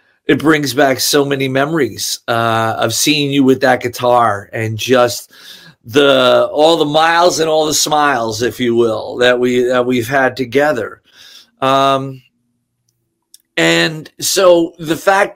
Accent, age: American, 50-69